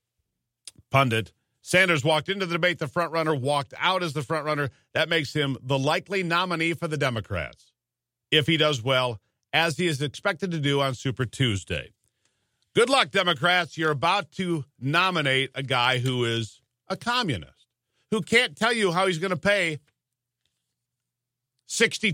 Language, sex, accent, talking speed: English, male, American, 165 wpm